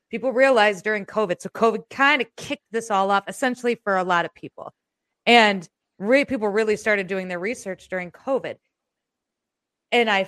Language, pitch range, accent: English, 180-225 Hz, American